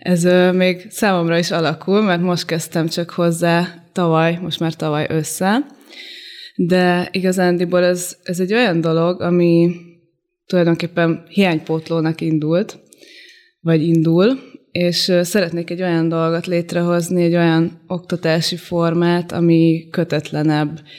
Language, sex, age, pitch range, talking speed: Hungarian, female, 20-39, 165-180 Hz, 115 wpm